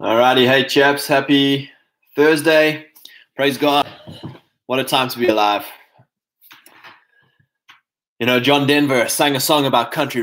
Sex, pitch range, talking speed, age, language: male, 105-140 Hz, 130 wpm, 20-39, English